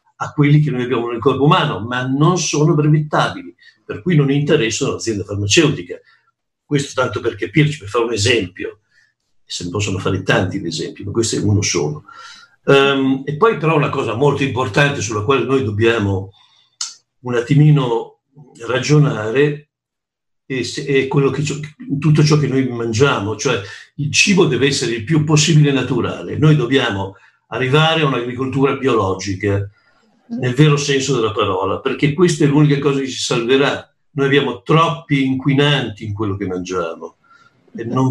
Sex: male